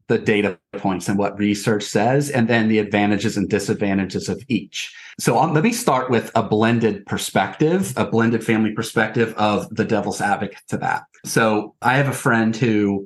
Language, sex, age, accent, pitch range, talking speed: English, male, 30-49, American, 100-120 Hz, 185 wpm